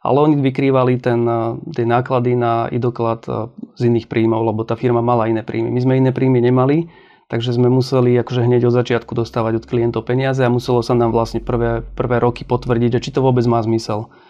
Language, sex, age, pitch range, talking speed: Slovak, male, 30-49, 115-130 Hz, 195 wpm